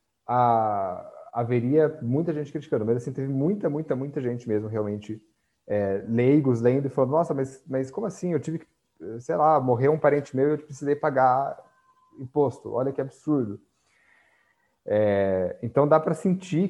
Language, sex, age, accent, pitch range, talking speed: Portuguese, male, 30-49, Brazilian, 110-150 Hz, 165 wpm